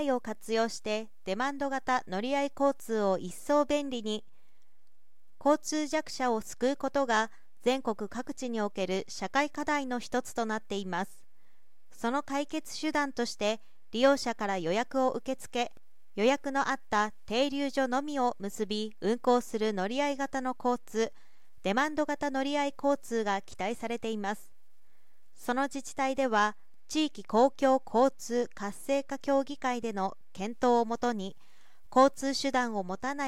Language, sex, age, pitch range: Japanese, female, 40-59, 215-275 Hz